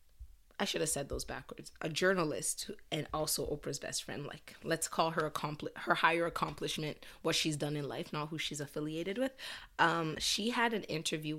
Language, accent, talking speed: English, American, 195 wpm